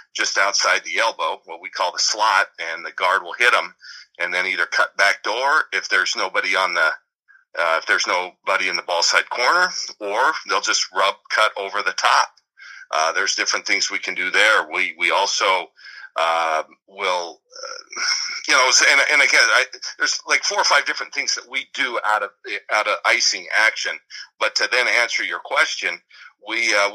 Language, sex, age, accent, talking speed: English, male, 50-69, American, 195 wpm